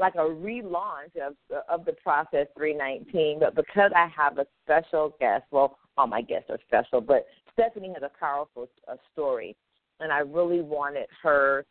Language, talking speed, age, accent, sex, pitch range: English, 170 wpm, 50-69, American, female, 155-215 Hz